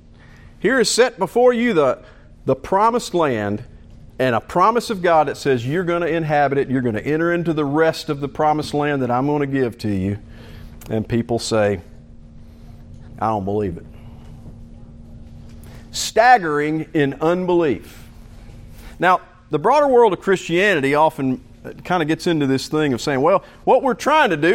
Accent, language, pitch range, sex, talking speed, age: American, English, 130-180 Hz, male, 170 wpm, 50-69